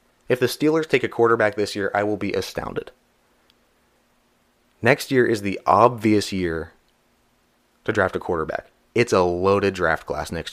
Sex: male